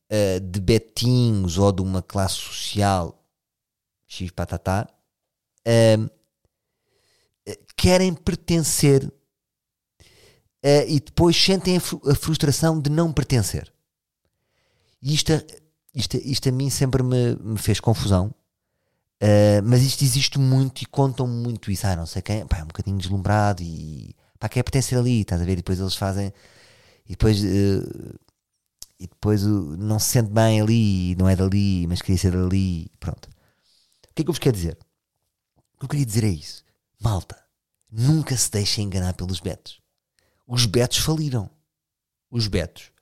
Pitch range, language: 95-125 Hz, Portuguese